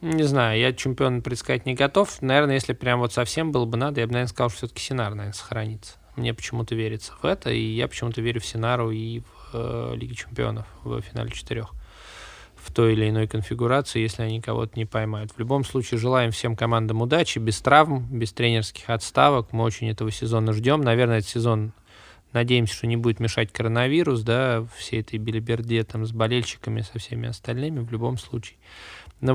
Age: 20-39